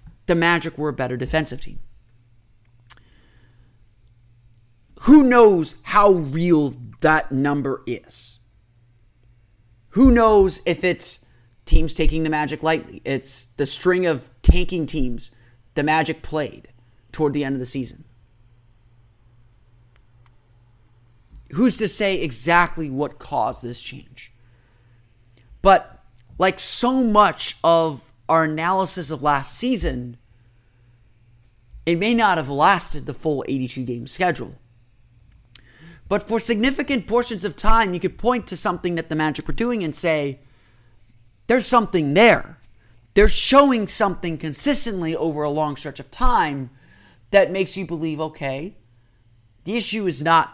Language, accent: English, American